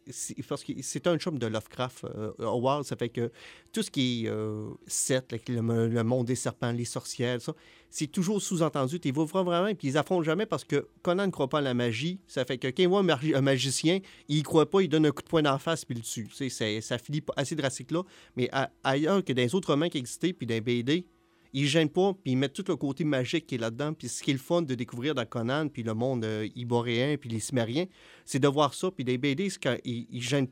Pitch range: 125-155 Hz